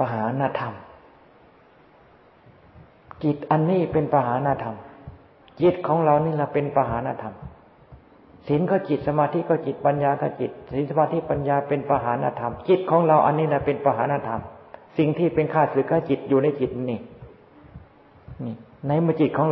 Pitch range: 130-155 Hz